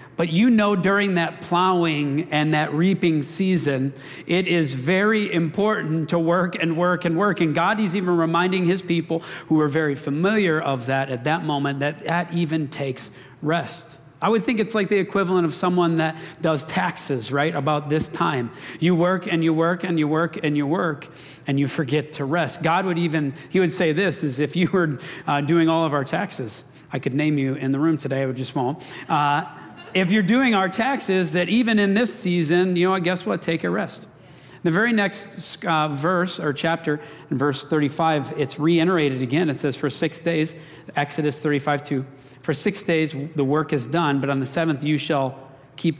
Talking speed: 200 wpm